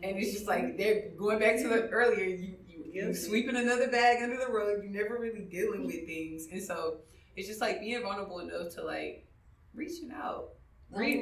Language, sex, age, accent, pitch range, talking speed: English, female, 20-39, American, 160-230 Hz, 210 wpm